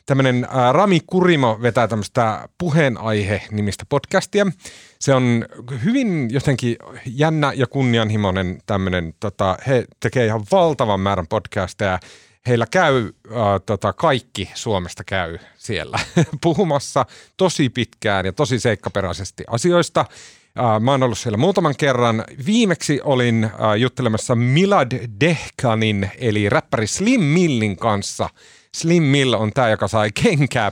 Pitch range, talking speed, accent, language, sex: 105-135 Hz, 115 wpm, native, Finnish, male